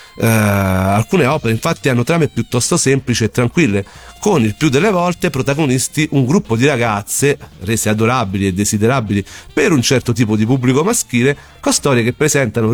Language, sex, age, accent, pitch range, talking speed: Italian, male, 40-59, native, 105-140 Hz, 160 wpm